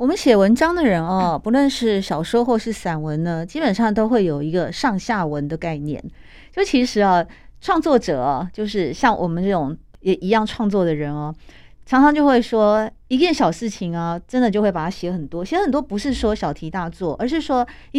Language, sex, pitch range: Chinese, female, 175-245 Hz